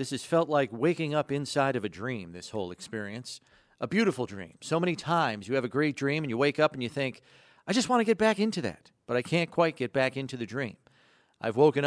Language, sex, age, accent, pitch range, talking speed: English, male, 50-69, American, 125-165 Hz, 255 wpm